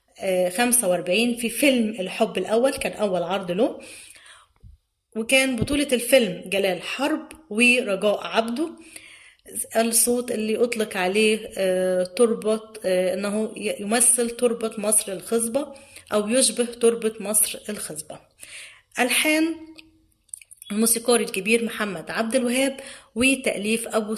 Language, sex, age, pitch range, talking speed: Arabic, female, 20-39, 210-255 Hz, 95 wpm